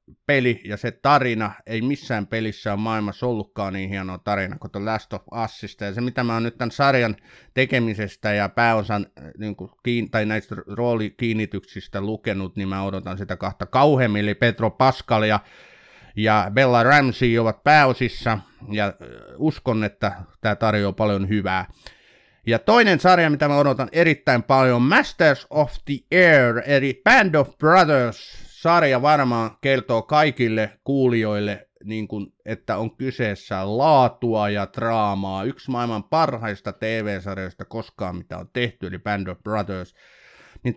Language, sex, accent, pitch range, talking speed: Finnish, male, native, 105-125 Hz, 145 wpm